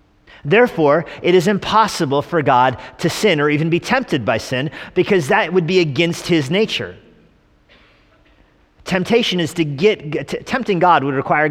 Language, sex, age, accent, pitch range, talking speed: English, male, 40-59, American, 130-175 Hz, 155 wpm